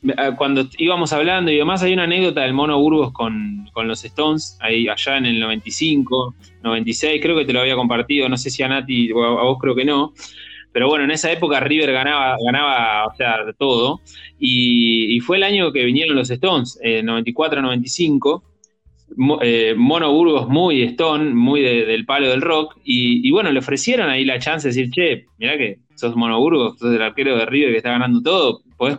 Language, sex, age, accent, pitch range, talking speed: Spanish, male, 20-39, Argentinian, 125-175 Hz, 210 wpm